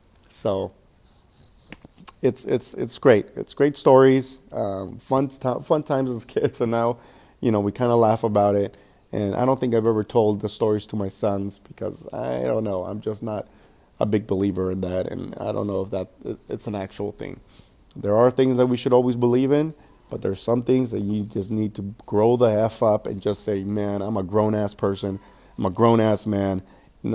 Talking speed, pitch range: 210 wpm, 100-125 Hz